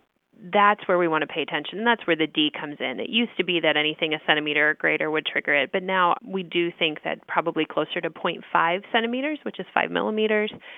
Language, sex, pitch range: English, female, 170-210 Hz